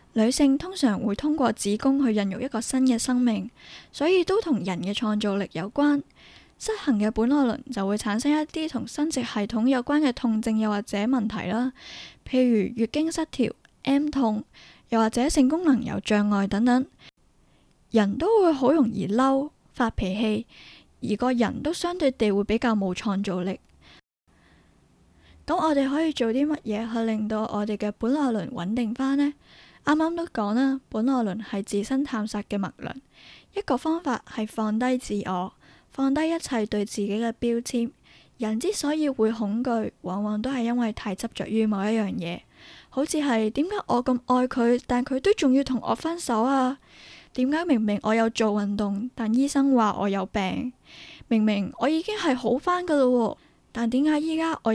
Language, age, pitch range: Chinese, 10-29, 215-275 Hz